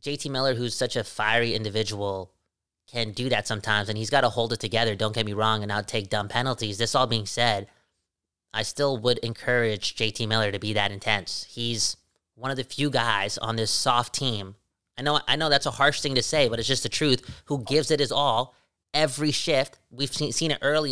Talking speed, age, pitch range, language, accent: 225 wpm, 20-39, 110-145 Hz, English, American